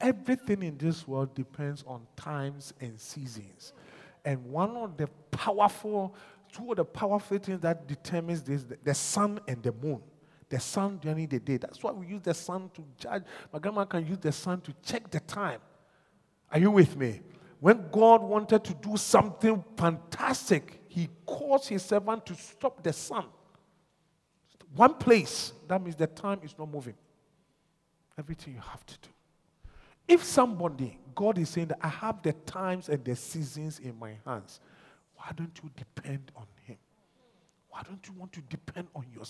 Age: 40-59